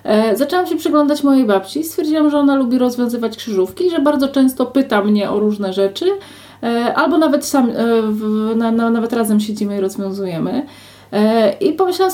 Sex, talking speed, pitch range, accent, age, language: female, 145 wpm, 210-265 Hz, native, 30-49, Polish